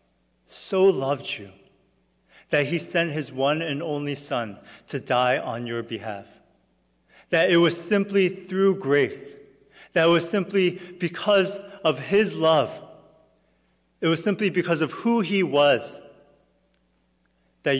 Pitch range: 115-175 Hz